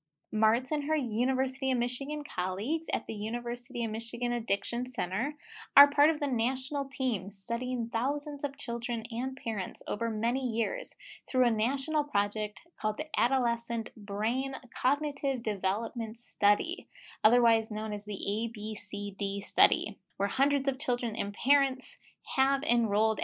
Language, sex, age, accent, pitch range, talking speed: English, female, 20-39, American, 220-275 Hz, 140 wpm